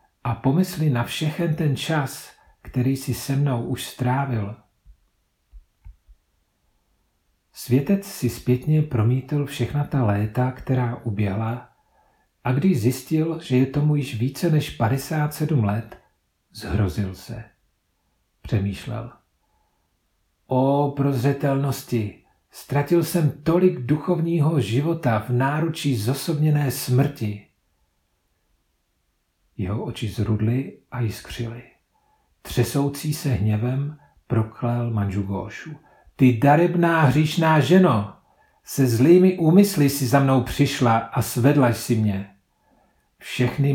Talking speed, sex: 100 wpm, male